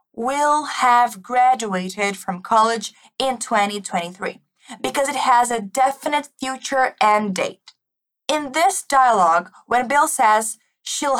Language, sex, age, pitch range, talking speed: Portuguese, female, 20-39, 210-275 Hz, 120 wpm